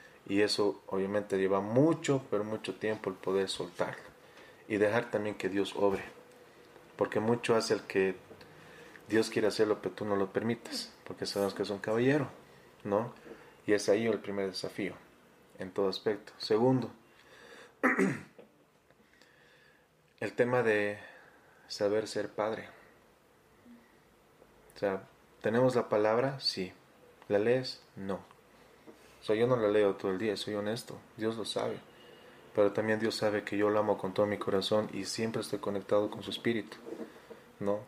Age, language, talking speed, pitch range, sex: 30-49, Spanish, 150 wpm, 100-115 Hz, male